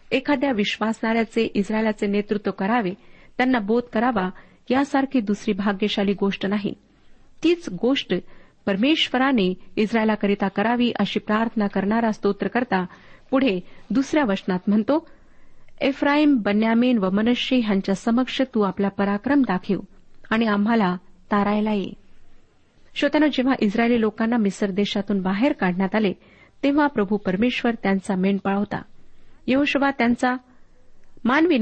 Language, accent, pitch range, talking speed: Marathi, native, 200-250 Hz, 110 wpm